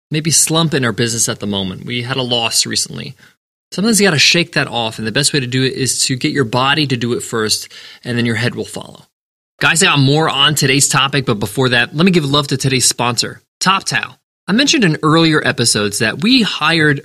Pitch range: 130-185 Hz